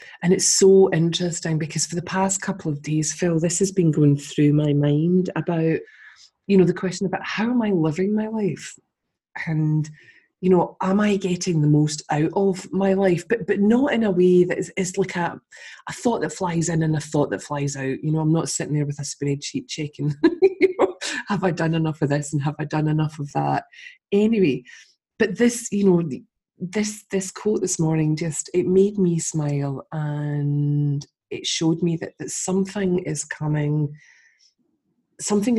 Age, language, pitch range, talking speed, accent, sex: 20-39, English, 150-190 Hz, 195 wpm, British, female